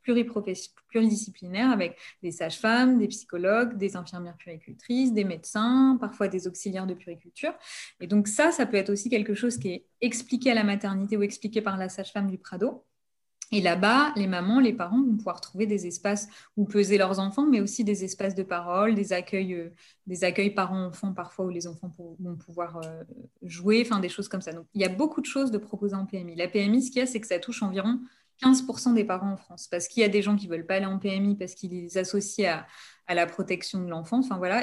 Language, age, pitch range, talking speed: French, 20-39, 180-225 Hz, 220 wpm